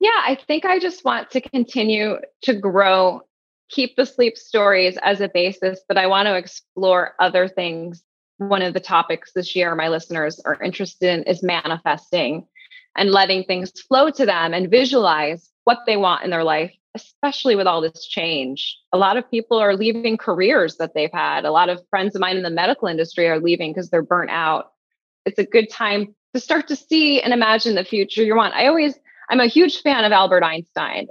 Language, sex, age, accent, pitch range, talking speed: English, female, 20-39, American, 180-250 Hz, 205 wpm